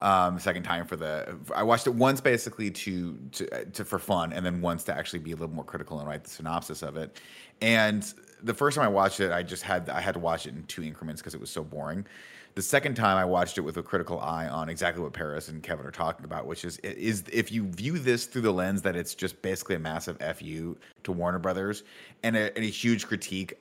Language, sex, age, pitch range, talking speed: English, male, 30-49, 90-110 Hz, 250 wpm